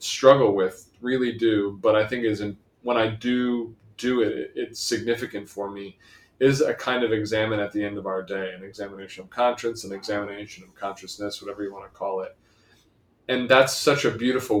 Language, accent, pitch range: English, American, 100-120 Hz